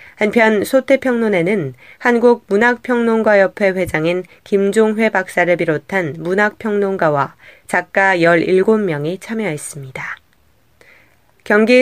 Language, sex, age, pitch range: Korean, female, 20-39, 175-235 Hz